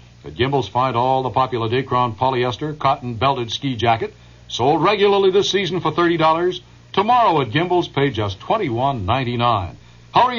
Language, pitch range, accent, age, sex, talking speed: English, 115-155 Hz, American, 60-79, male, 140 wpm